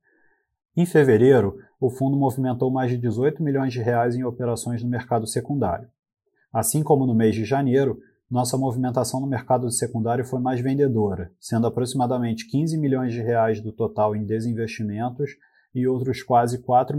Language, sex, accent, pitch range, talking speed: Portuguese, male, Brazilian, 120-135 Hz, 155 wpm